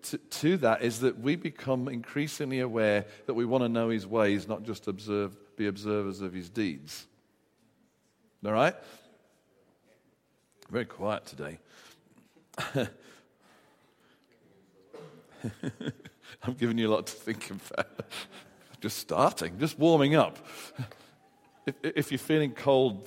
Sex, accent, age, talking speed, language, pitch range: male, British, 50-69, 120 wpm, English, 105-140 Hz